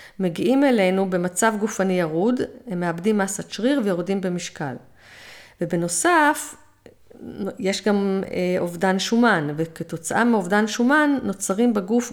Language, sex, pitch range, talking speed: Hebrew, female, 185-230 Hz, 110 wpm